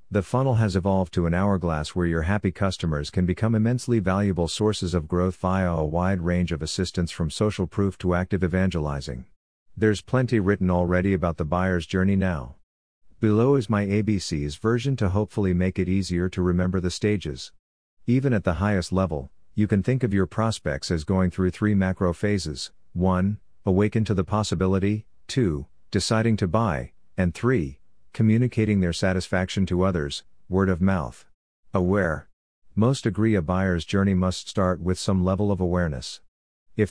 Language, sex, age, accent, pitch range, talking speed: English, male, 50-69, American, 90-105 Hz, 165 wpm